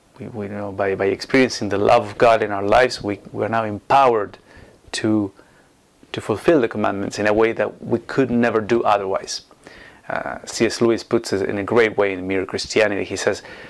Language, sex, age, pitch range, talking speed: English, male, 30-49, 105-125 Hz, 195 wpm